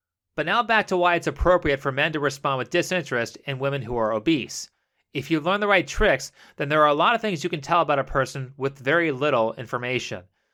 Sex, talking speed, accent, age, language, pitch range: male, 235 wpm, American, 30-49, English, 135-180 Hz